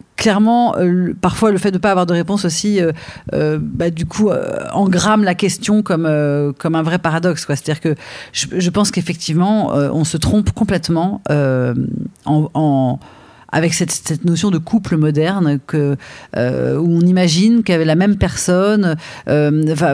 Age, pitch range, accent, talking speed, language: 40-59, 145-185 Hz, French, 170 wpm, French